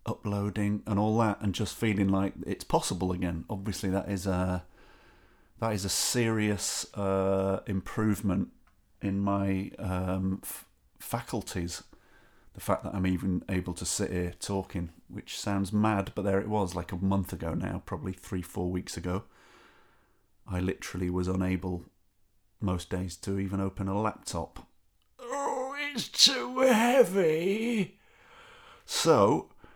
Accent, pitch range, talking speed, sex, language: British, 90-105 Hz, 140 wpm, male, English